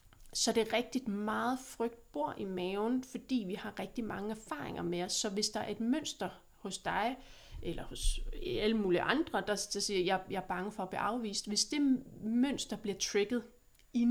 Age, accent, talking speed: 30-49, native, 205 wpm